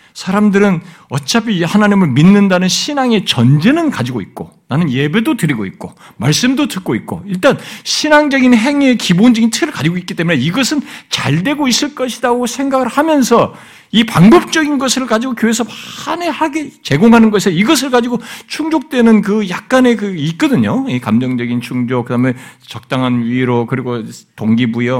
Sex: male